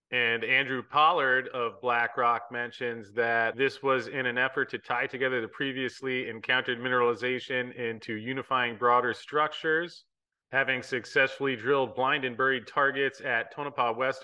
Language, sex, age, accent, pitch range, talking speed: English, male, 30-49, American, 120-140 Hz, 140 wpm